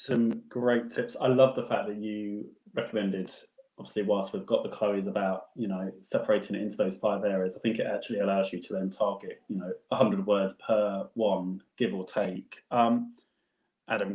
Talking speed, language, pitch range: 190 wpm, English, 95-115 Hz